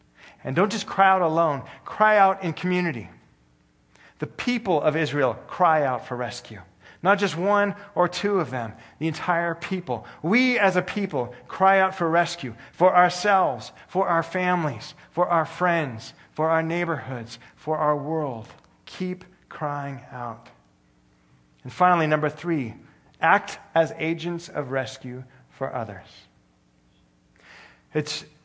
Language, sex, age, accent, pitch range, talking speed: English, male, 40-59, American, 130-190 Hz, 135 wpm